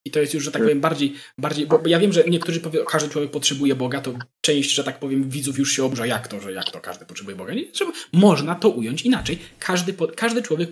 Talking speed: 260 wpm